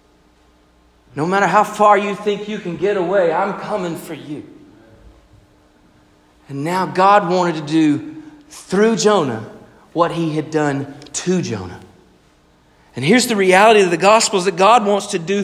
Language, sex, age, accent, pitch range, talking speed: English, male, 40-59, American, 130-200 Hz, 155 wpm